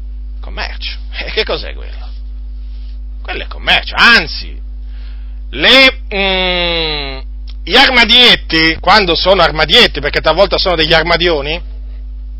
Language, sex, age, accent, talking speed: Italian, male, 40-59, native, 105 wpm